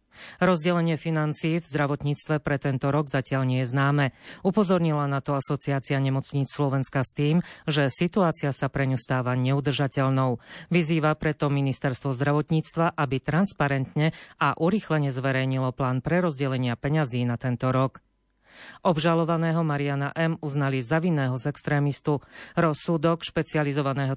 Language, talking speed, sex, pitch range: Slovak, 125 wpm, female, 135-160 Hz